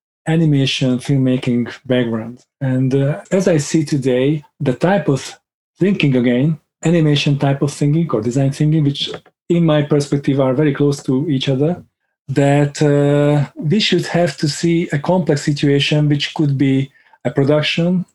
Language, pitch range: Hungarian, 140-165 Hz